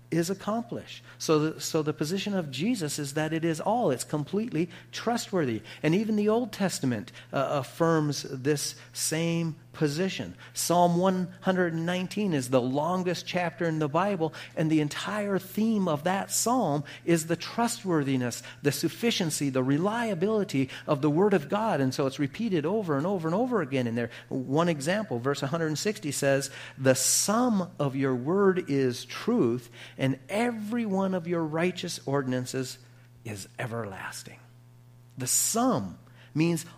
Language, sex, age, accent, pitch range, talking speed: English, male, 40-59, American, 125-175 Hz, 150 wpm